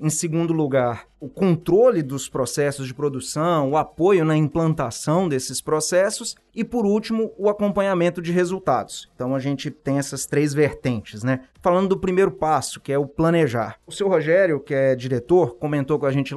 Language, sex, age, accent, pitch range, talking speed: Portuguese, male, 30-49, Brazilian, 140-185 Hz, 175 wpm